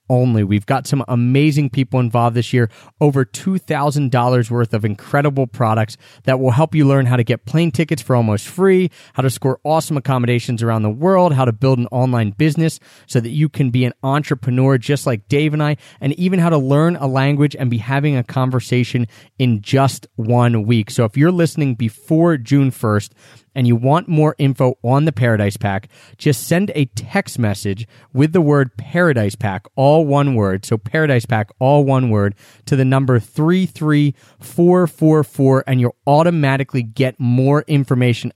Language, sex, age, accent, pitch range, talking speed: English, male, 30-49, American, 120-145 Hz, 180 wpm